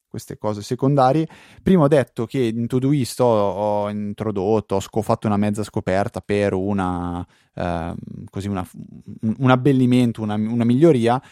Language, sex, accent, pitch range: Italian, male, native, 105-130 Hz